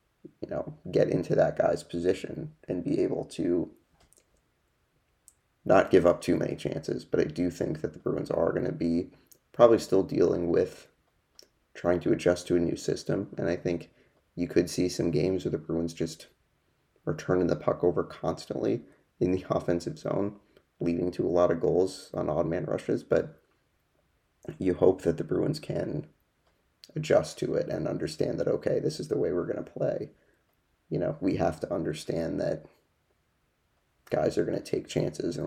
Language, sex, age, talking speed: English, male, 30-49, 180 wpm